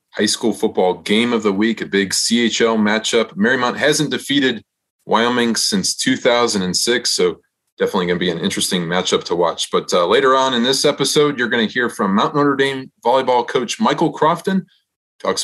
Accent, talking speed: American, 185 wpm